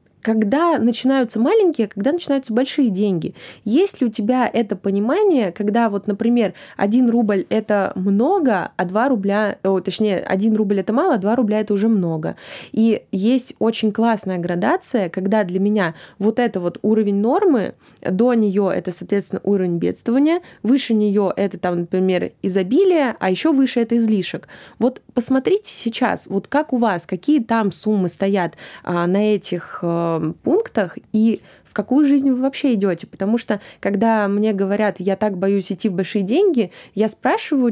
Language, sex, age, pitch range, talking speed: Russian, female, 20-39, 195-240 Hz, 155 wpm